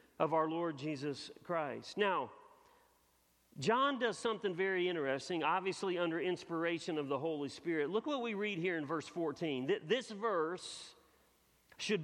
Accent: American